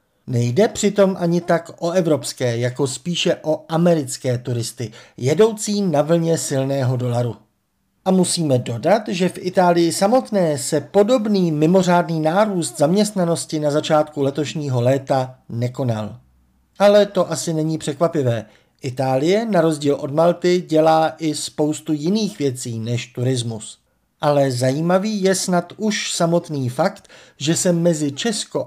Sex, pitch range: male, 135-175 Hz